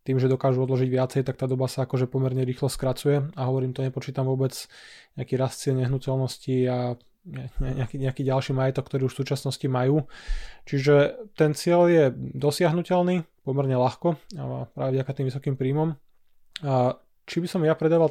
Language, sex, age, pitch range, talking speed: Slovak, male, 20-39, 130-140 Hz, 175 wpm